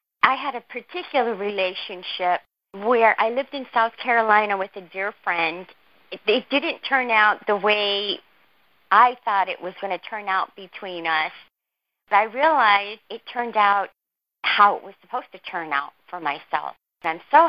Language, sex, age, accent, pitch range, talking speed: English, female, 40-59, American, 180-230 Hz, 170 wpm